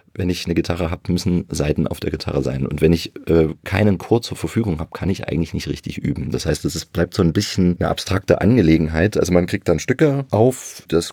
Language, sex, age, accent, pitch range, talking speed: German, male, 30-49, German, 80-105 Hz, 235 wpm